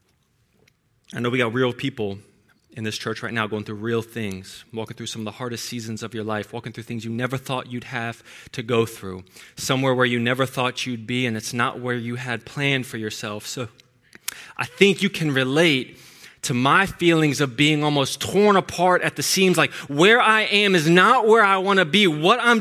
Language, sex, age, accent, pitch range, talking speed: English, male, 20-39, American, 115-180 Hz, 220 wpm